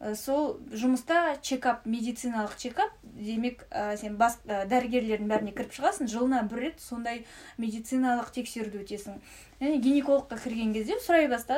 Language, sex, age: Russian, female, 10-29